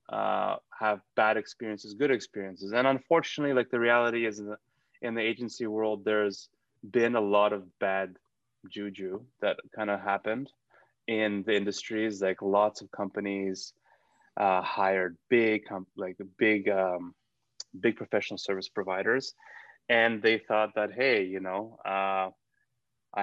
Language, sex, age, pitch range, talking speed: English, male, 20-39, 100-125 Hz, 135 wpm